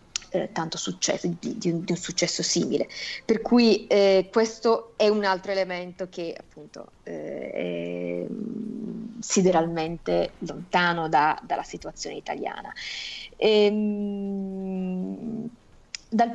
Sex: female